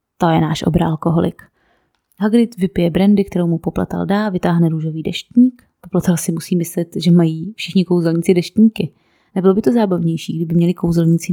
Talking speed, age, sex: 165 wpm, 20-39, female